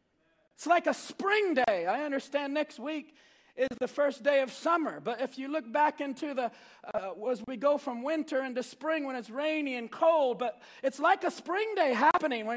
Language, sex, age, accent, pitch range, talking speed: English, male, 40-59, American, 290-385 Hz, 205 wpm